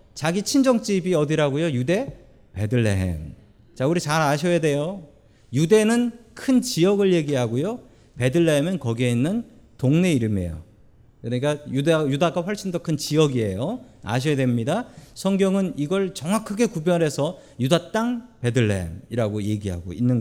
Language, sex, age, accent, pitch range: Korean, male, 40-59, native, 125-195 Hz